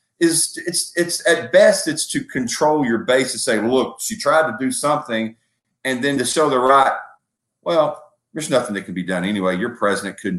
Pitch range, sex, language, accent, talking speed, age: 110-155 Hz, male, English, American, 200 wpm, 40-59